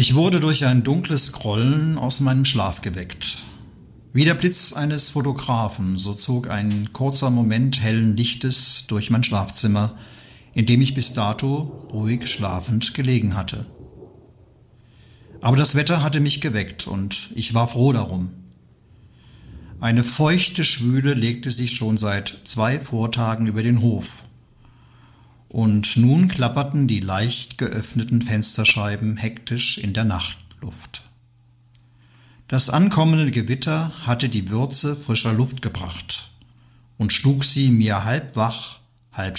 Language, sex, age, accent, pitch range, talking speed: German, male, 50-69, German, 110-130 Hz, 130 wpm